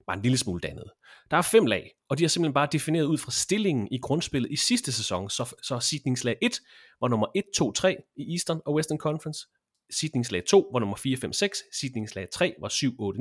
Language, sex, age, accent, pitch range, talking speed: Danish, male, 30-49, native, 120-170 Hz, 225 wpm